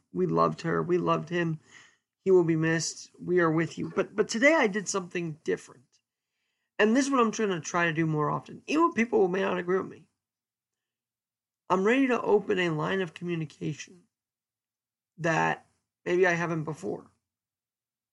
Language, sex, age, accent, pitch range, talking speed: English, male, 20-39, American, 155-200 Hz, 180 wpm